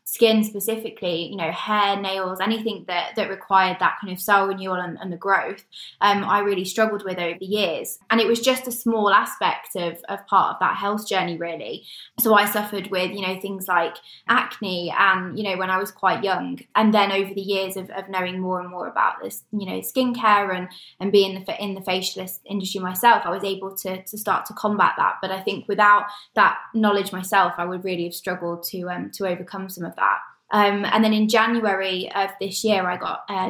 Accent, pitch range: British, 185-215 Hz